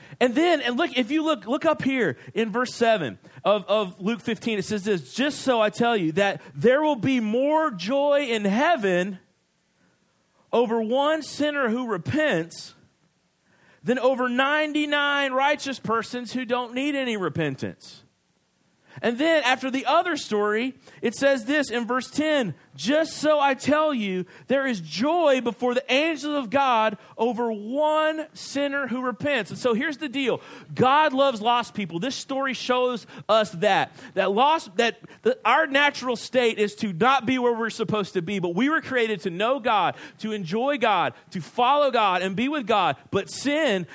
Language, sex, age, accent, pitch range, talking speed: English, male, 40-59, American, 205-275 Hz, 170 wpm